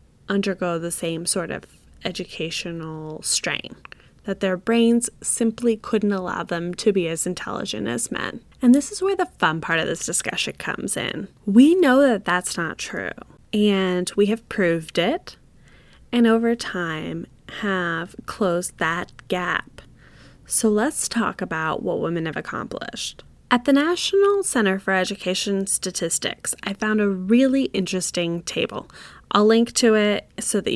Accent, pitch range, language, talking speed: American, 175-235 Hz, English, 150 wpm